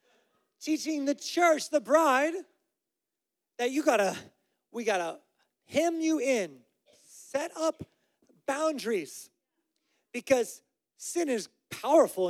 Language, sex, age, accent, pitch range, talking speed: English, male, 30-49, American, 170-255 Hz, 105 wpm